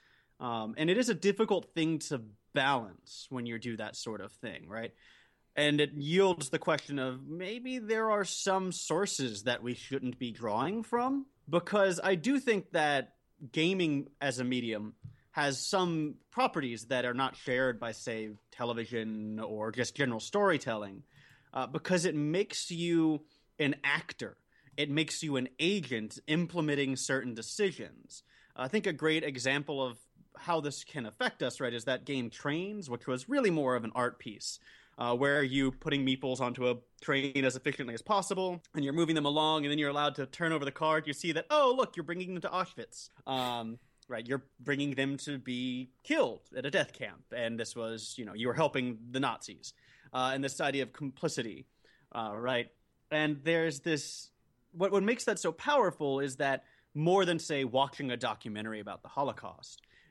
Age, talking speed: 30-49, 185 wpm